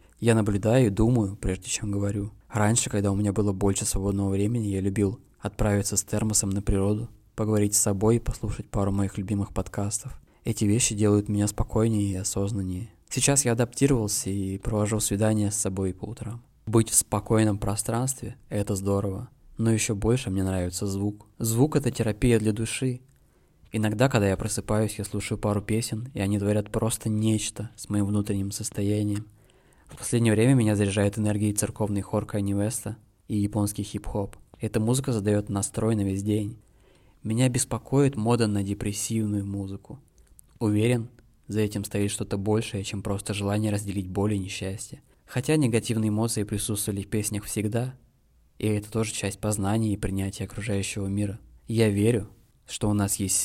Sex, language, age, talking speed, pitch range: male, Russian, 20-39, 160 wpm, 100-115 Hz